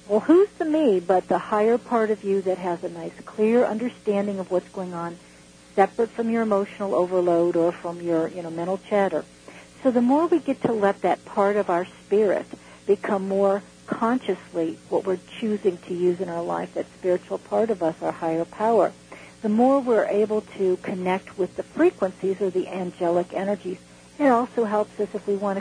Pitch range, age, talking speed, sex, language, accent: 180-230 Hz, 60-79, 195 wpm, female, English, American